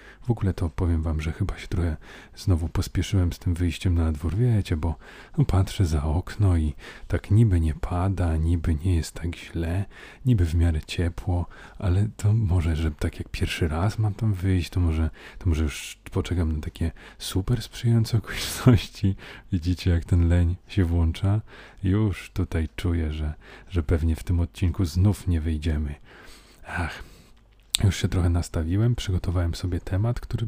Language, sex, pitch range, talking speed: Polish, male, 85-95 Hz, 165 wpm